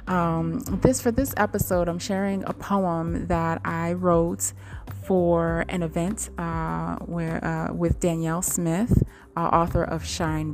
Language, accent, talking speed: English, American, 140 wpm